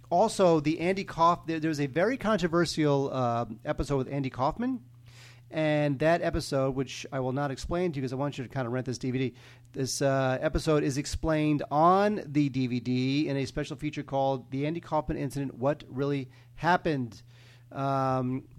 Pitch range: 125-160 Hz